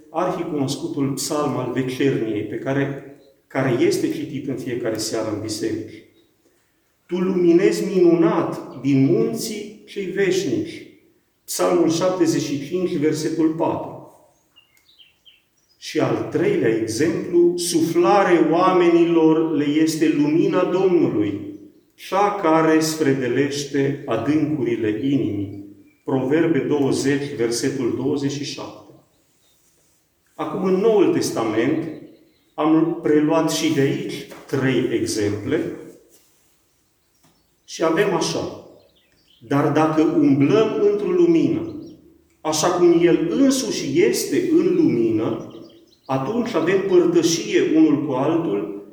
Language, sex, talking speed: Romanian, male, 95 wpm